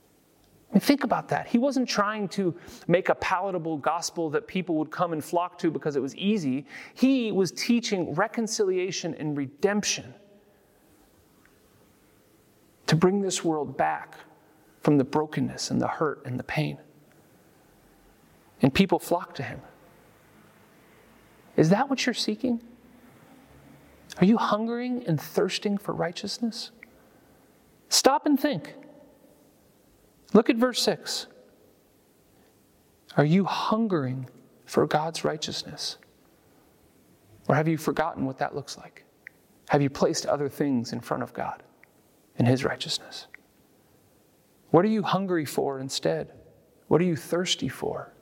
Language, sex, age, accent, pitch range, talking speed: English, male, 40-59, American, 150-220 Hz, 130 wpm